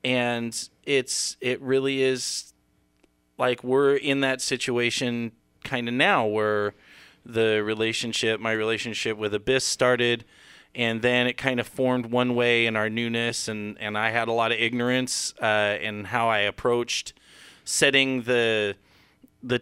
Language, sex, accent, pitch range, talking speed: English, male, American, 105-125 Hz, 145 wpm